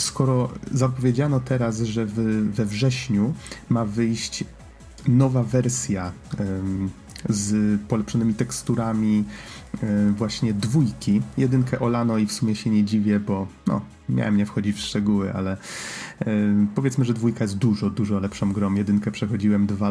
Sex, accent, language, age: male, native, Polish, 30-49